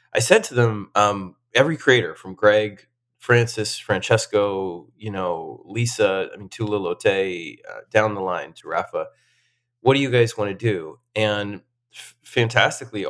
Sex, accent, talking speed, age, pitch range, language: male, American, 155 wpm, 20-39, 100-120 Hz, English